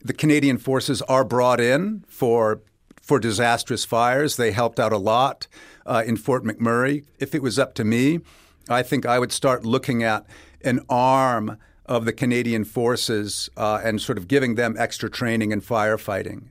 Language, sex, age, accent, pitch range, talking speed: English, male, 50-69, American, 115-135 Hz, 175 wpm